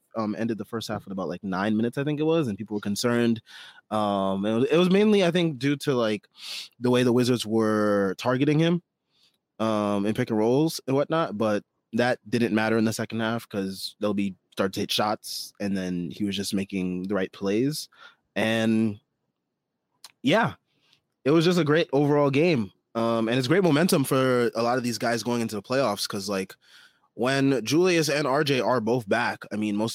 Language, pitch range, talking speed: English, 105-130 Hz, 205 wpm